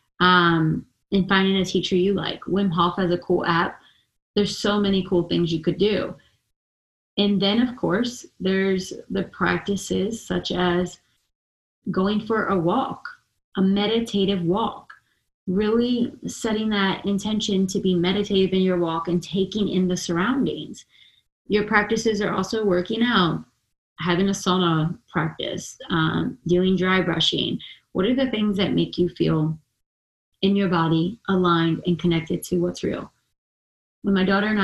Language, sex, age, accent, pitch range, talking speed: English, female, 30-49, American, 175-205 Hz, 150 wpm